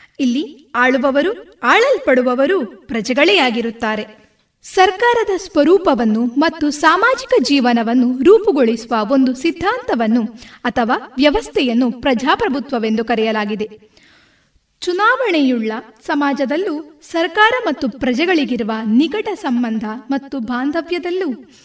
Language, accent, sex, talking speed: Kannada, native, female, 70 wpm